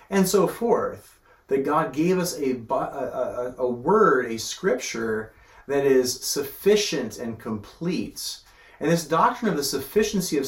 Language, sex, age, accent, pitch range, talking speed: English, male, 30-49, American, 120-180 Hz, 150 wpm